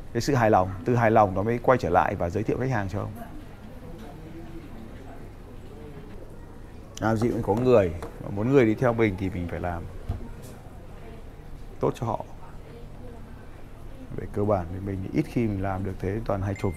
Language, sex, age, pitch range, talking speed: Vietnamese, male, 20-39, 100-115 Hz, 175 wpm